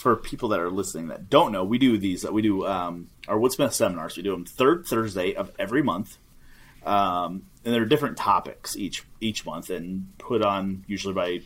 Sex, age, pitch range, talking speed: male, 30-49, 95-115 Hz, 205 wpm